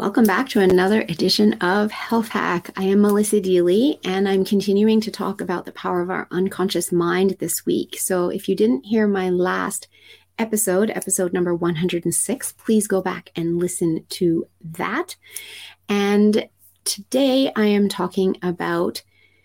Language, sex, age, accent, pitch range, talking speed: English, female, 30-49, American, 185-215 Hz, 155 wpm